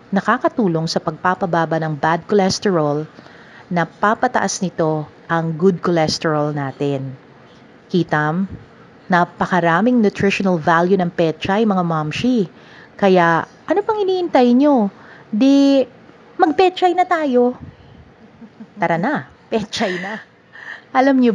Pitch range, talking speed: 160-225 Hz, 105 wpm